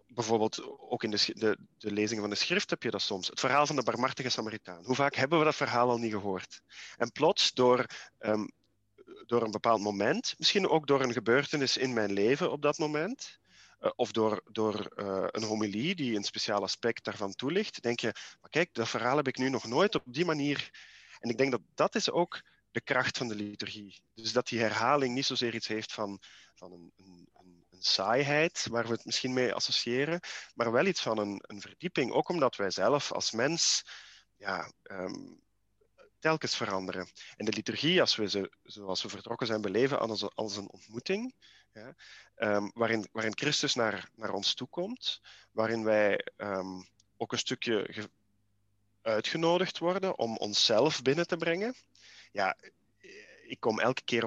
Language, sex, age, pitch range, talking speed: Dutch, male, 40-59, 105-135 Hz, 185 wpm